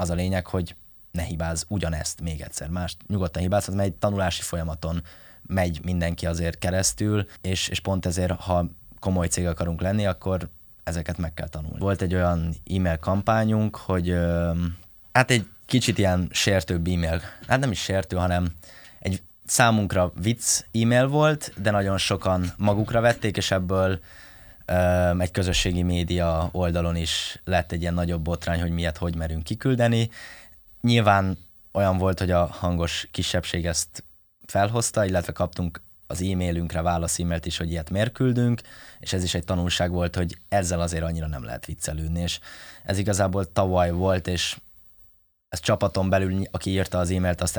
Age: 20-39